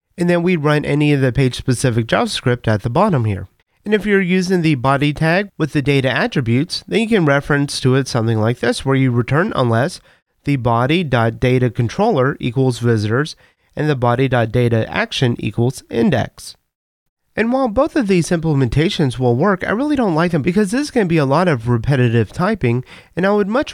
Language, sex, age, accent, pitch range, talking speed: English, male, 30-49, American, 120-165 Hz, 190 wpm